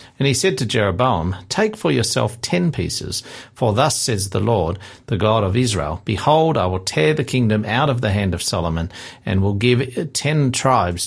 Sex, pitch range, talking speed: male, 95-125 Hz, 195 wpm